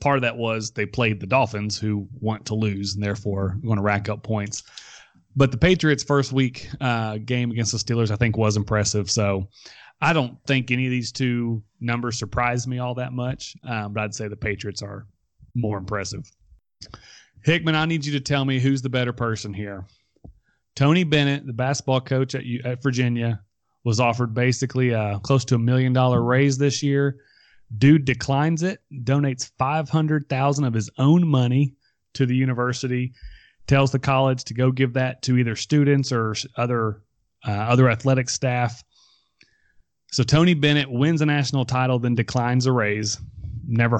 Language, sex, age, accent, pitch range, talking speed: English, male, 30-49, American, 110-135 Hz, 170 wpm